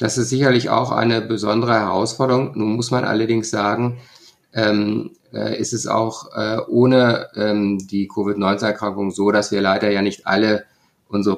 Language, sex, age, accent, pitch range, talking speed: German, male, 50-69, German, 100-120 Hz, 135 wpm